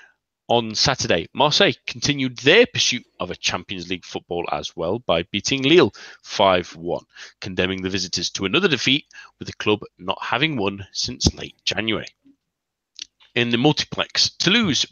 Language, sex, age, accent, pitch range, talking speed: English, male, 30-49, British, 95-140 Hz, 145 wpm